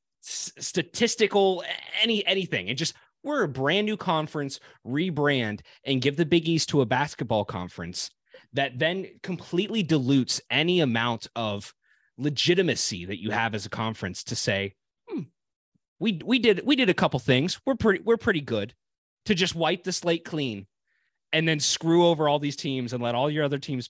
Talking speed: 175 wpm